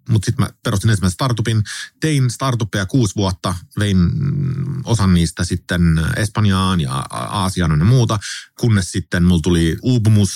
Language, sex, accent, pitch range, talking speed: Finnish, male, native, 85-120 Hz, 140 wpm